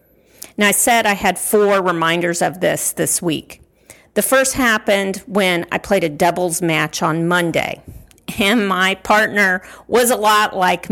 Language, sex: English, female